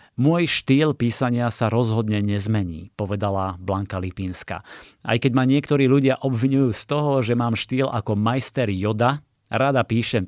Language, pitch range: Slovak, 100-130 Hz